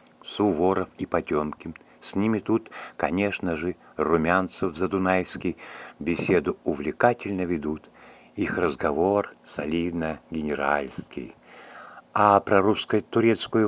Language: Russian